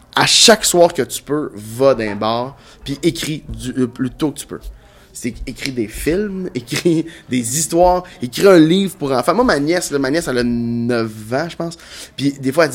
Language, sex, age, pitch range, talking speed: French, male, 20-39, 120-160 Hz, 205 wpm